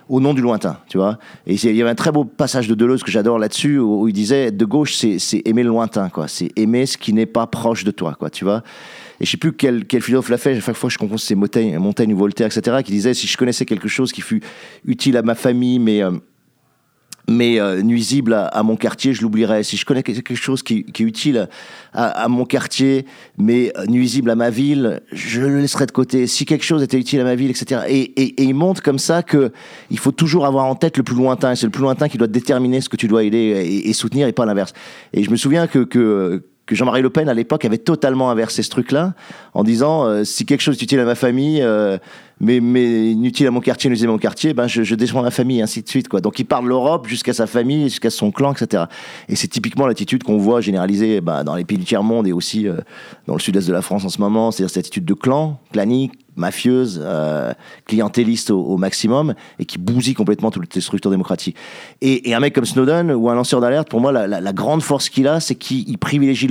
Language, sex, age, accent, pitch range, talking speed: French, male, 40-59, French, 110-135 Hz, 255 wpm